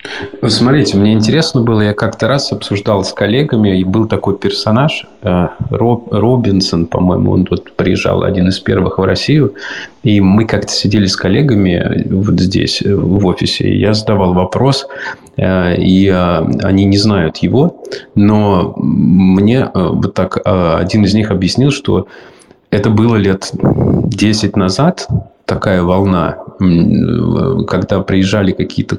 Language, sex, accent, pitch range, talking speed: Russian, male, native, 95-115 Hz, 130 wpm